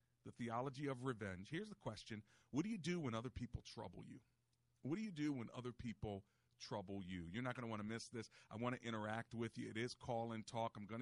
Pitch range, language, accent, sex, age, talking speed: 100-120 Hz, English, American, male, 40-59, 250 wpm